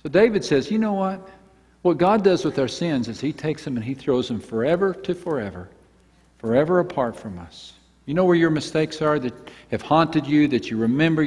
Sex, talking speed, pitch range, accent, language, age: male, 215 wpm, 130-180 Hz, American, English, 50-69